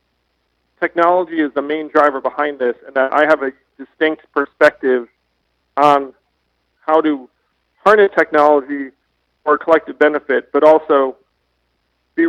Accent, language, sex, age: American, English, male, 40-59